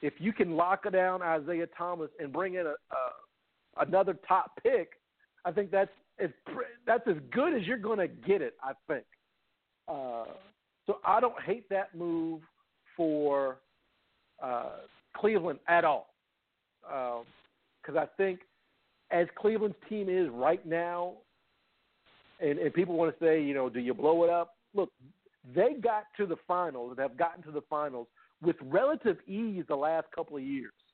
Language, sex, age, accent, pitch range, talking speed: English, male, 50-69, American, 145-190 Hz, 165 wpm